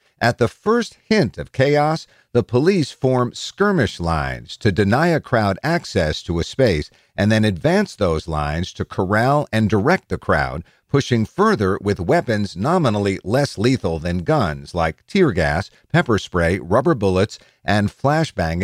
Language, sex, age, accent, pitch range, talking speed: English, male, 50-69, American, 95-130 Hz, 155 wpm